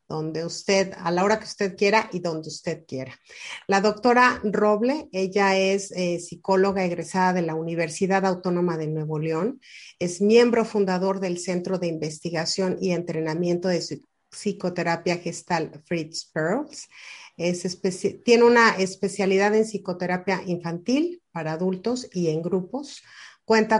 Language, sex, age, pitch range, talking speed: Spanish, female, 40-59, 170-200 Hz, 140 wpm